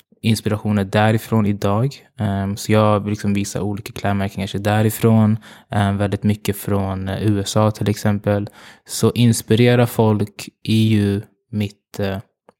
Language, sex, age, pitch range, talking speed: Swedish, male, 20-39, 100-110 Hz, 115 wpm